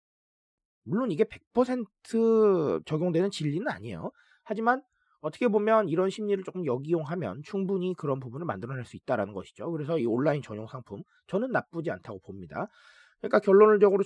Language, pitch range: Korean, 145-210 Hz